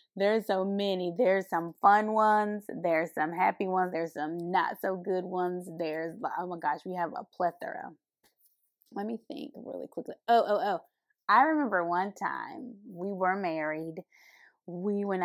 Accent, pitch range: American, 170-220 Hz